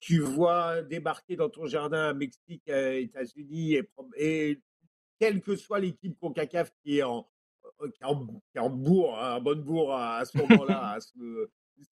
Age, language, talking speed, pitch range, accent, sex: 50-69, French, 175 wpm, 145-220 Hz, French, male